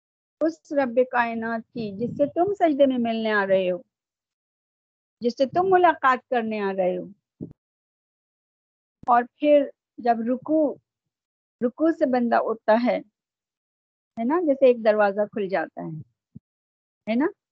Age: 50-69